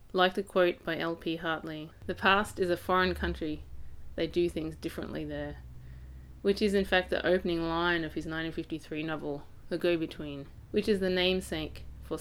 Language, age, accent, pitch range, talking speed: English, 20-39, Australian, 150-185 Hz, 170 wpm